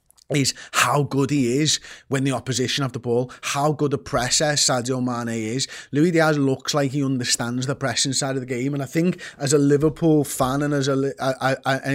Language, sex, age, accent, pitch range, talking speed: English, male, 20-39, British, 130-145 Hz, 195 wpm